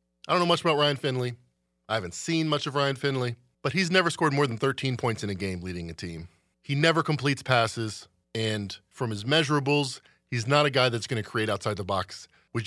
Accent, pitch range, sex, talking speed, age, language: American, 100-150 Hz, male, 225 wpm, 40-59, English